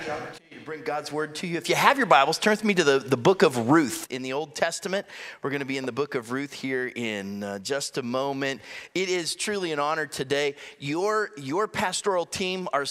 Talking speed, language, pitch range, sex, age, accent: 235 wpm, English, 120-155 Hz, male, 30-49, American